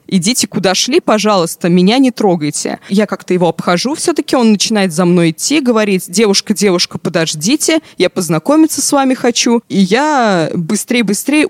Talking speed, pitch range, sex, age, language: 150 wpm, 175-215 Hz, female, 20-39, Russian